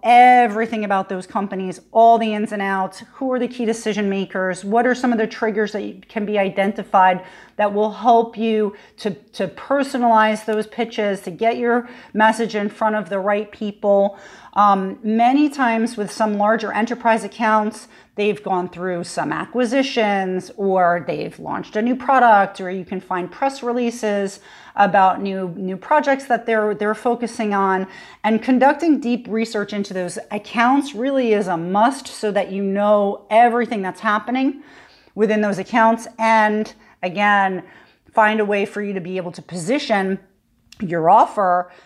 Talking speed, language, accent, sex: 160 wpm, English, American, female